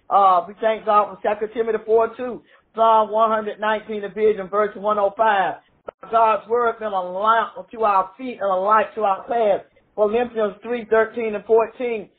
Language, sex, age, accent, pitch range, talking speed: English, male, 50-69, American, 210-245 Hz, 185 wpm